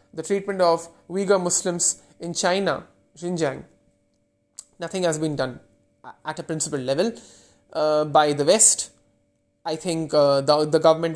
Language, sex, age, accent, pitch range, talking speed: English, male, 20-39, Indian, 140-175 Hz, 140 wpm